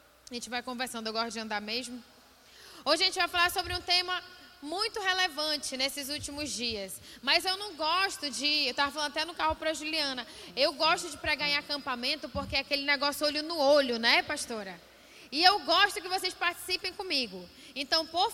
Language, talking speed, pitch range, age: Portuguese, 195 wpm, 275-350 Hz, 10-29